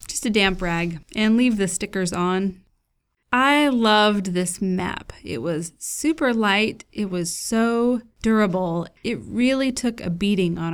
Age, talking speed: 20-39, 150 wpm